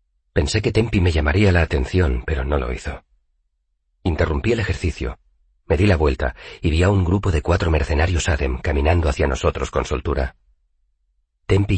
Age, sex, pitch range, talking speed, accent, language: 40-59, male, 65-90 Hz, 170 wpm, Spanish, Spanish